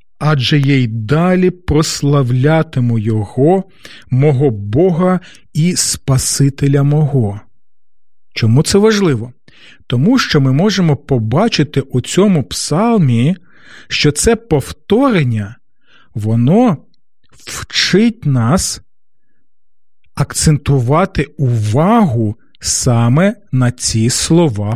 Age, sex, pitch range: 40-59, male, 125-180 Hz